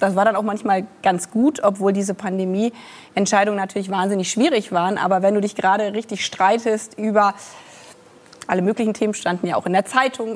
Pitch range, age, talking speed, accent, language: 195-235 Hz, 30-49, 180 wpm, German, German